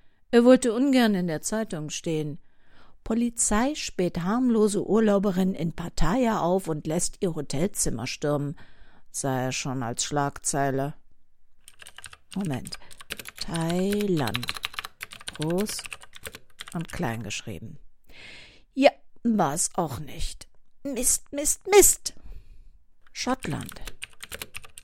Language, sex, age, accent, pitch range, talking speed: German, female, 50-69, German, 155-220 Hz, 90 wpm